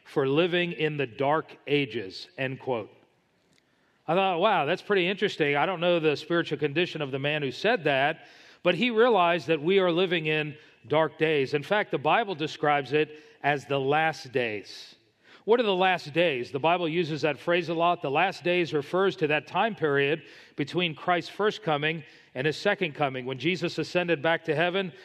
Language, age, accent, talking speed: English, 40-59, American, 190 wpm